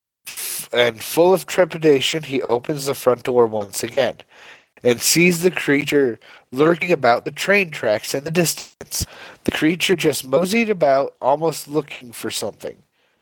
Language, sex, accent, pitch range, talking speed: English, male, American, 120-155 Hz, 145 wpm